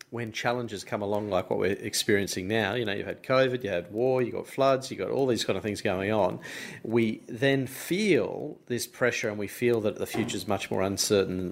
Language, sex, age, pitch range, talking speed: English, male, 40-59, 105-130 Hz, 230 wpm